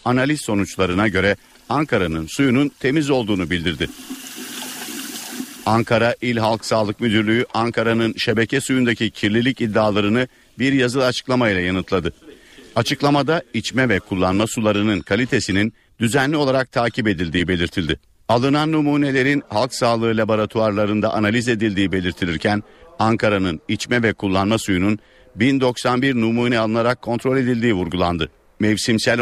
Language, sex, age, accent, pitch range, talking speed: Turkish, male, 50-69, native, 100-125 Hz, 110 wpm